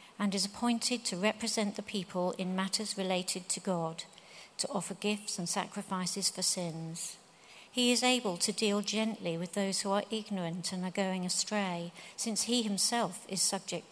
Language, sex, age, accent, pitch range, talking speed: English, female, 50-69, British, 180-210 Hz, 170 wpm